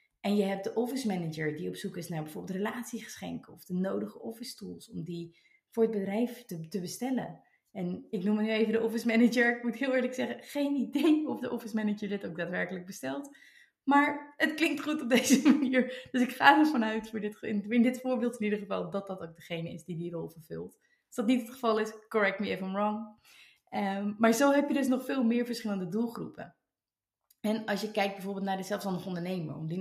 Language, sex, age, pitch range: Dutch, female, 20-39, 185-240 Hz